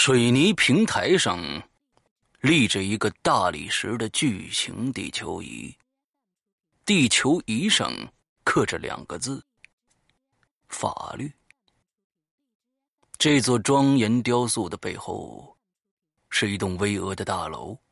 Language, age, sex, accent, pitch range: Chinese, 30-49, male, native, 105-155 Hz